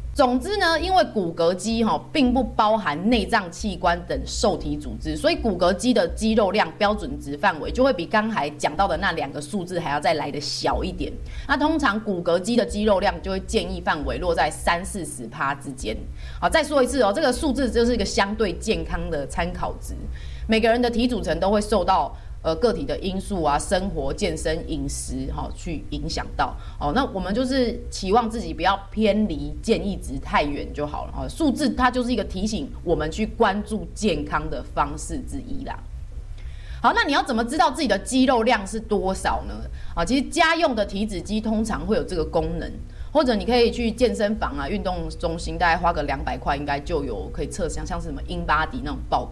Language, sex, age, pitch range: Chinese, female, 20-39, 170-245 Hz